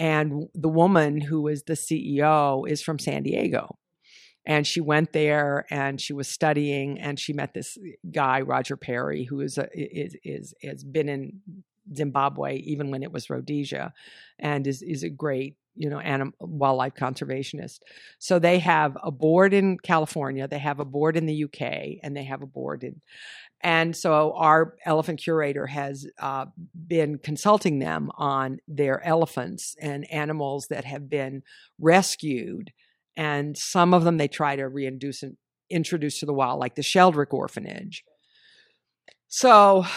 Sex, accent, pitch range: female, American, 140-165 Hz